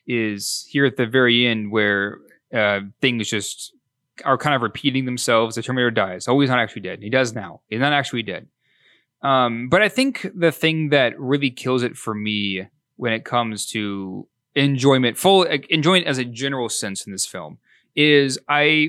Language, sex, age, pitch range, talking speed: English, male, 20-39, 115-155 Hz, 185 wpm